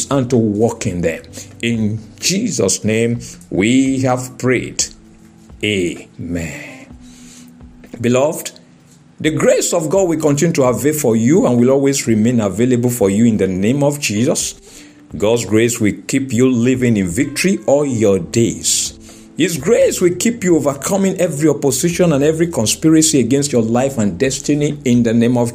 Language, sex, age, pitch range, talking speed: English, male, 50-69, 110-155 Hz, 155 wpm